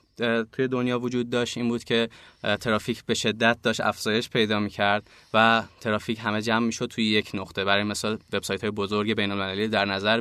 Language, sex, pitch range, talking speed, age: Persian, male, 100-115 Hz, 190 wpm, 20-39